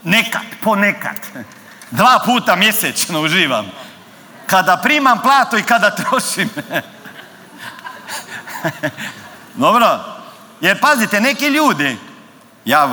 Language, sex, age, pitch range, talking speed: Croatian, male, 50-69, 185-250 Hz, 85 wpm